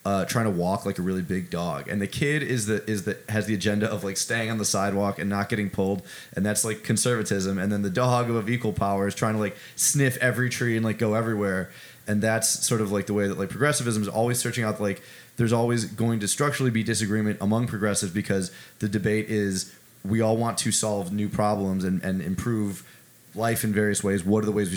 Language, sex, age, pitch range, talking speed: English, male, 20-39, 95-110 Hz, 235 wpm